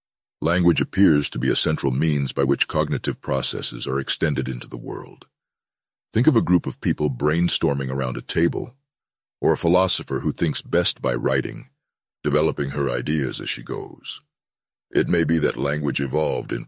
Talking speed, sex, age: 170 wpm, male, 60-79